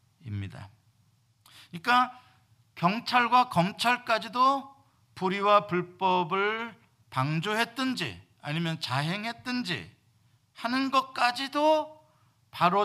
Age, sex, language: 50-69, male, Korean